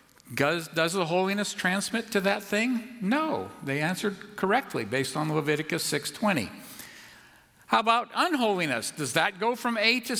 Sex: male